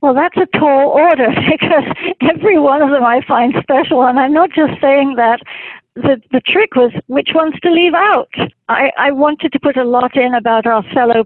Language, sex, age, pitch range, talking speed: English, female, 60-79, 230-280 Hz, 210 wpm